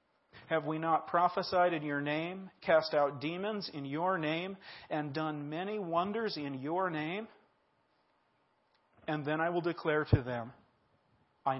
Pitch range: 130-160 Hz